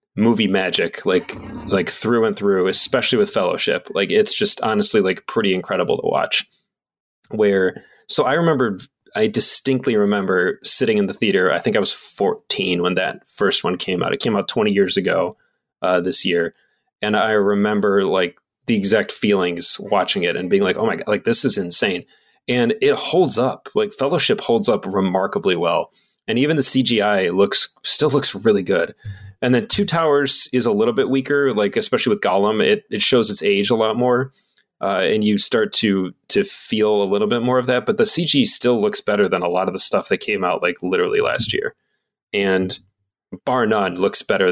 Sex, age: male, 20-39